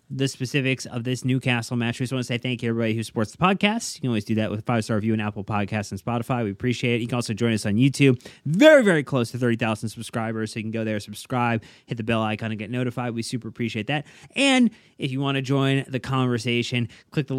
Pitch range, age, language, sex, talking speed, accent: 120-150 Hz, 30-49, English, male, 260 wpm, American